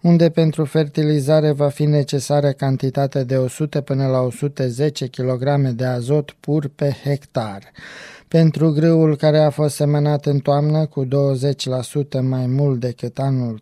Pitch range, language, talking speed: 130-150 Hz, Romanian, 140 wpm